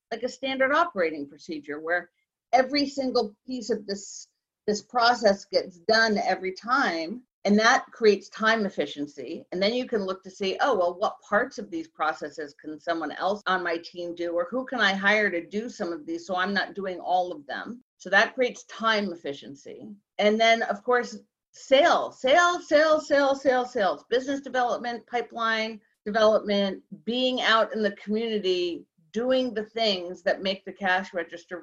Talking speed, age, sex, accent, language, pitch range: 175 wpm, 50-69, female, American, English, 185-245 Hz